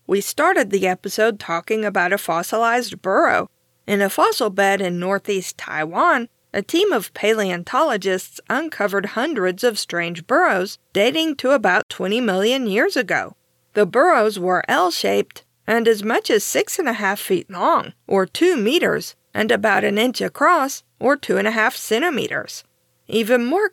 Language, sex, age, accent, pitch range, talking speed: English, female, 50-69, American, 190-260 Hz, 155 wpm